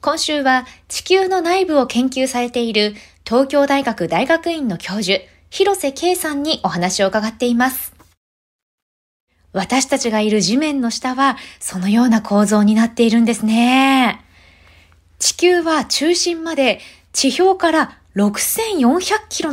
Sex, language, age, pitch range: female, Japanese, 20-39, 210-300 Hz